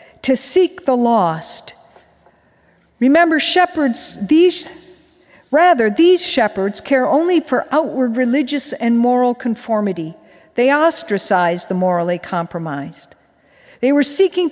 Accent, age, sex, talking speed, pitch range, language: American, 50-69, female, 110 wpm, 210-280 Hz, English